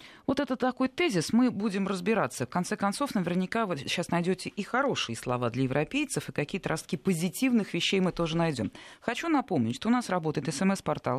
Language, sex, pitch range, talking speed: Russian, female, 150-210 Hz, 180 wpm